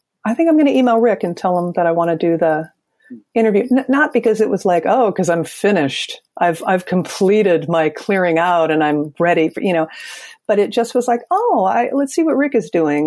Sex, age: female, 50-69